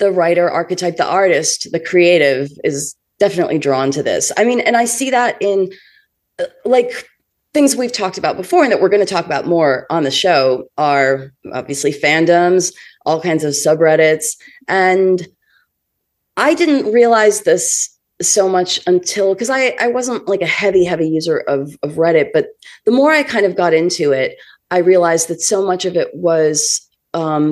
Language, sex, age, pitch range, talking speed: English, female, 30-49, 160-225 Hz, 180 wpm